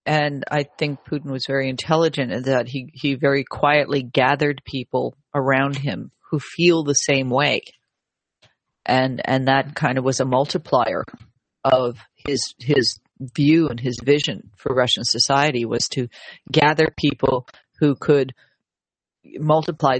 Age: 40-59